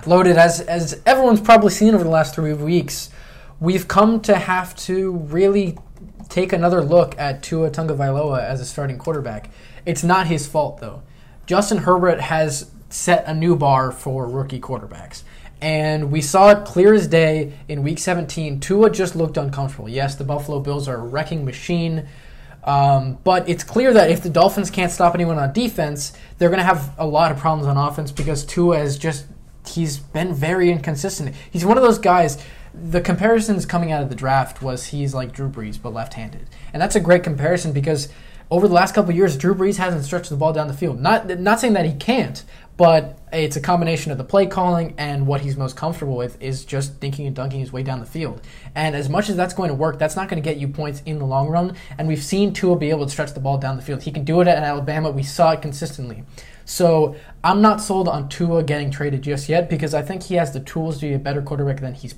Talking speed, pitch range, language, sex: 225 wpm, 140-180 Hz, English, male